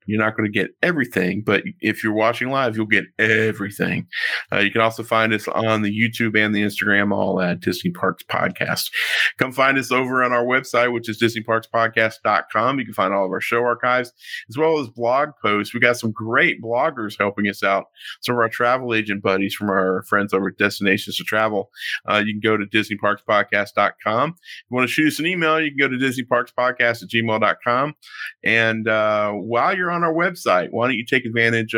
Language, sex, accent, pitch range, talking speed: English, male, American, 105-125 Hz, 205 wpm